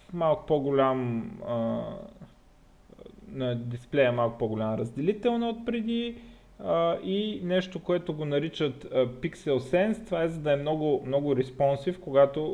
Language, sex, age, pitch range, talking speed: Bulgarian, male, 20-39, 125-170 Hz, 120 wpm